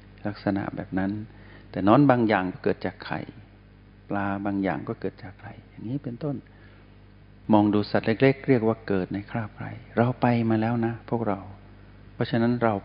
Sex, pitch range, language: male, 100-110 Hz, Thai